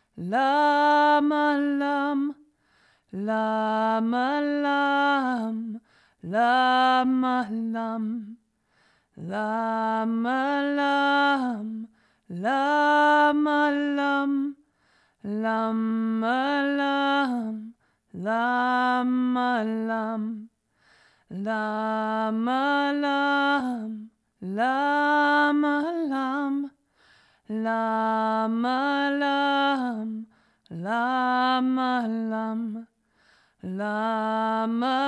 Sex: female